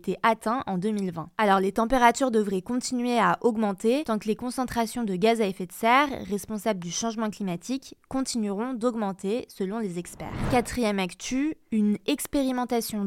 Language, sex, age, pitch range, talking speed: French, female, 20-39, 200-245 Hz, 155 wpm